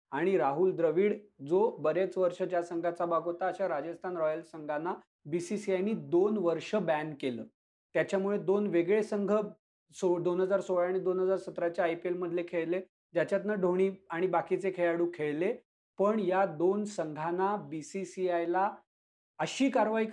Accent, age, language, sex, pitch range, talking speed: native, 40-59, Marathi, male, 175-205 Hz, 135 wpm